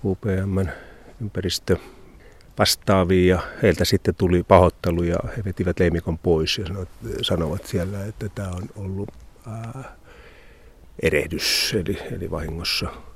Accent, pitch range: native, 85-100 Hz